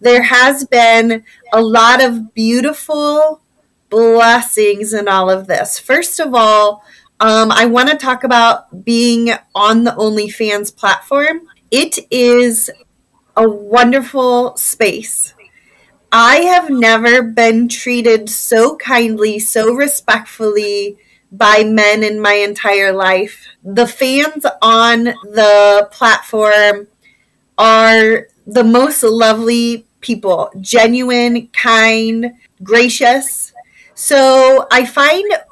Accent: American